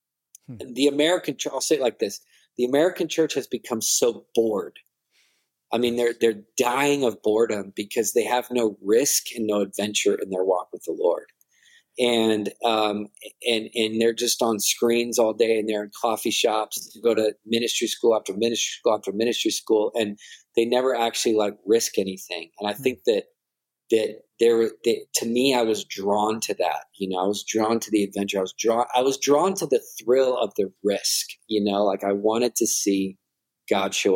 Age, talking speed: 40-59, 195 wpm